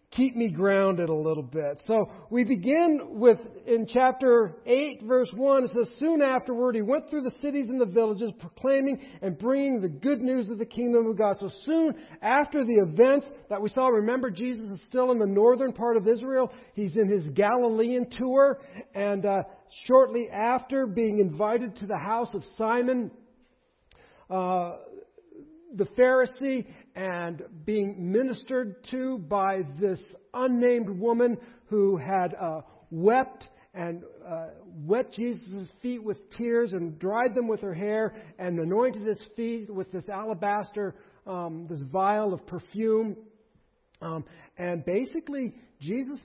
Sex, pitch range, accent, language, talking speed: male, 195-255 Hz, American, English, 150 wpm